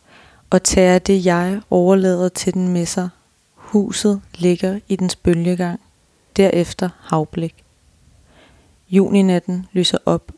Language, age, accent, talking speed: Danish, 30-49, native, 110 wpm